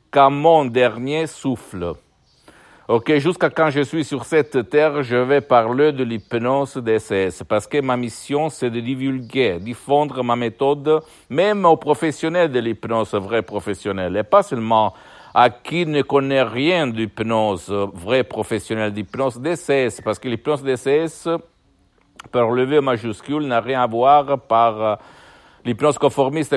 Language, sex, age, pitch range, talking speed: Italian, male, 60-79, 110-140 Hz, 140 wpm